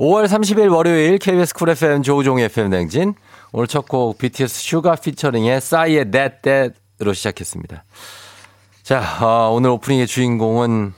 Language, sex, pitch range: Korean, male, 100-130 Hz